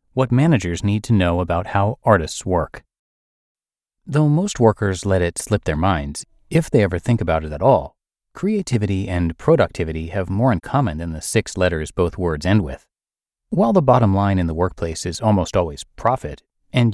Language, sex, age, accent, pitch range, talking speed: English, male, 30-49, American, 85-130 Hz, 185 wpm